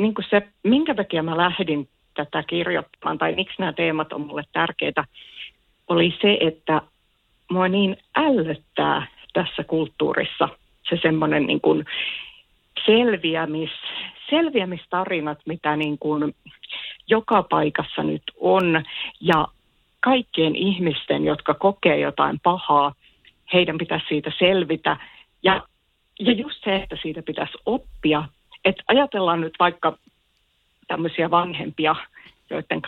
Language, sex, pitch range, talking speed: Finnish, female, 155-195 Hz, 115 wpm